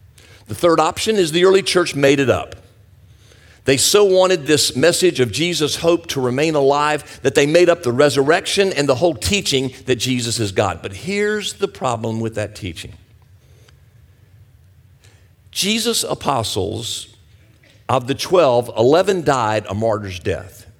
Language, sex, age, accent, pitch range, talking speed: English, male, 50-69, American, 105-150 Hz, 150 wpm